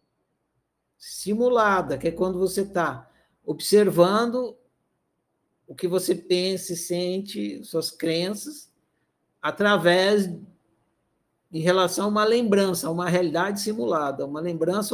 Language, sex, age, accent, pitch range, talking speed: Portuguese, male, 60-79, Brazilian, 175-245 Hz, 110 wpm